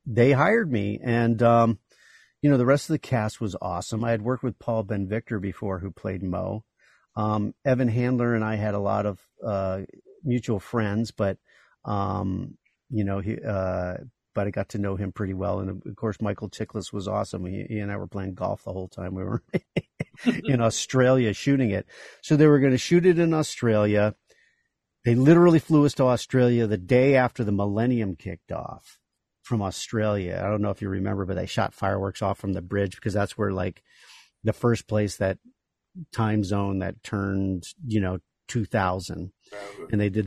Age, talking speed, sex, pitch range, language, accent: 50-69, 195 wpm, male, 100-125 Hz, English, American